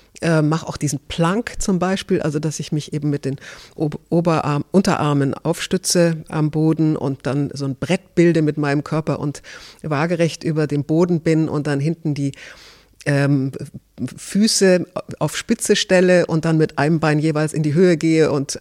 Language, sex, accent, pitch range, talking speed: German, female, German, 150-185 Hz, 170 wpm